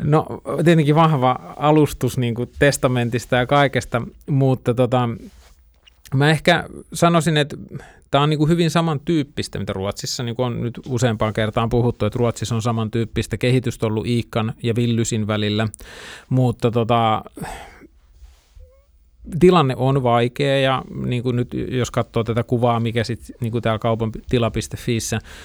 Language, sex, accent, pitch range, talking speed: Finnish, male, native, 110-130 Hz, 135 wpm